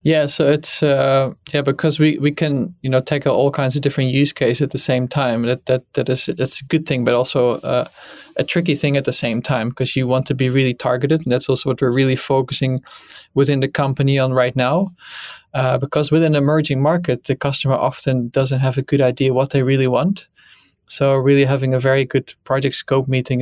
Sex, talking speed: male, 225 wpm